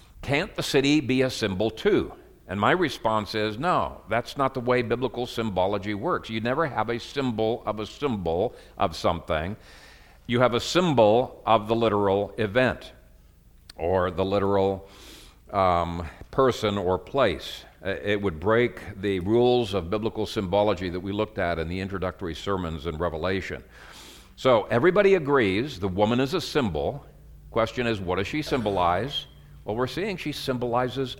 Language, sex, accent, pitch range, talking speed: English, male, American, 95-125 Hz, 155 wpm